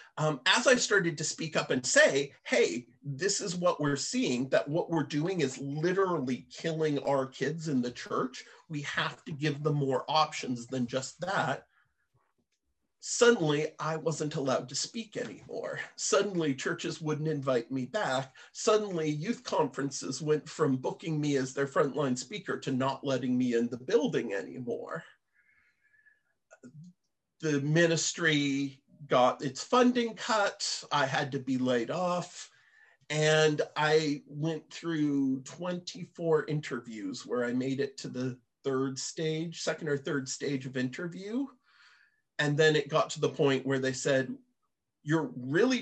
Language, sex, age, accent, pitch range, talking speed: English, male, 40-59, American, 135-175 Hz, 150 wpm